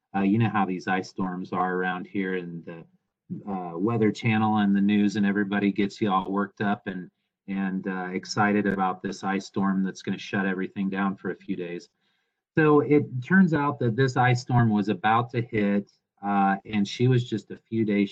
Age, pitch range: 40-59, 95-110 Hz